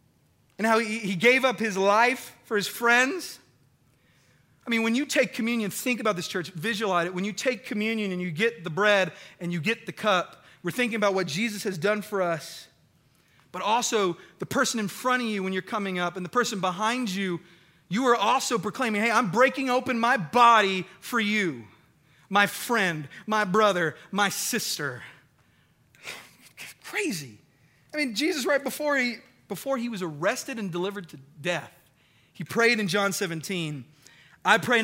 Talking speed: 175 wpm